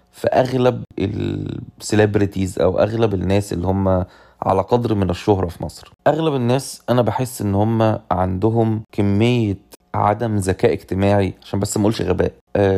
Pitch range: 100-125 Hz